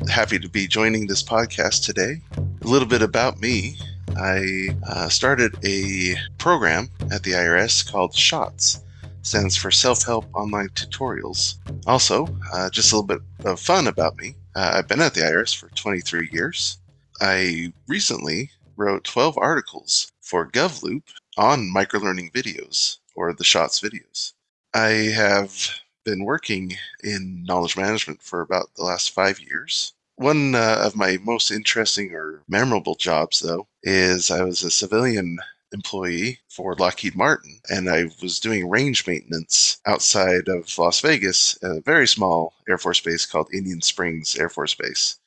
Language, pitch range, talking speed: English, 90-110 Hz, 150 wpm